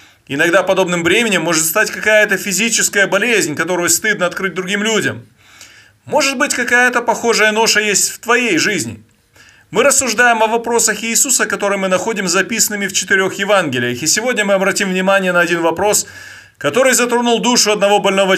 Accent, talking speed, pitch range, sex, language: native, 155 wpm, 175-225 Hz, male, Russian